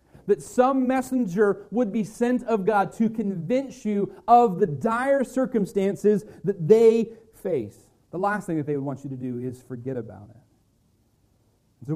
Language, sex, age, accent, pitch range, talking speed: English, male, 30-49, American, 170-215 Hz, 165 wpm